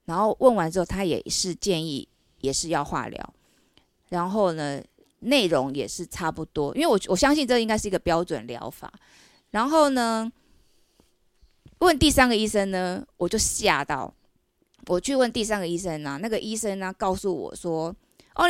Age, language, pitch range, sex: 20-39, Chinese, 200-315 Hz, female